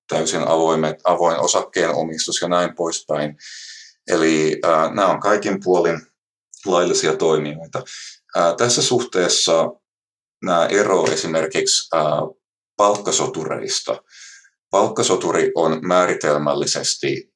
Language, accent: Finnish, native